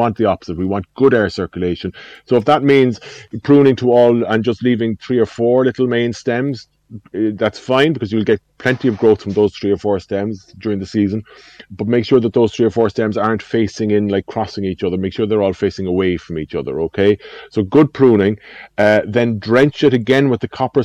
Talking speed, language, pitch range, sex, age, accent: 220 wpm, English, 100-120 Hz, male, 30-49, Irish